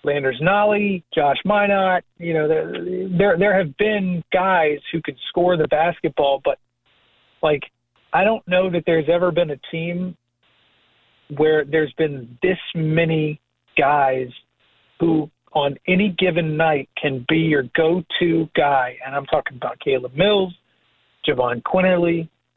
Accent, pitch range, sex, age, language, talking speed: American, 145-180 Hz, male, 40-59, English, 135 wpm